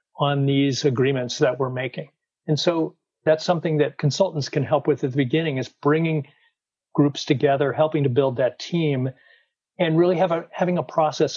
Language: English